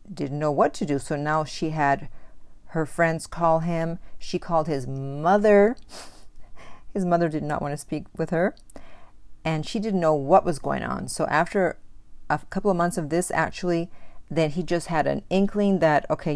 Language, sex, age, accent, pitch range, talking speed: English, female, 50-69, American, 145-175 Hz, 185 wpm